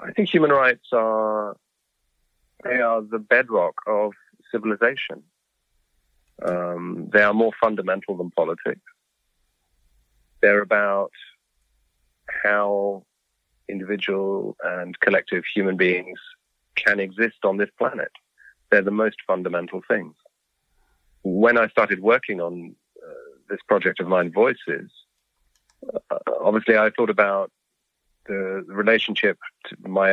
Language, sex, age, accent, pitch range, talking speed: French, male, 40-59, British, 95-110 Hz, 110 wpm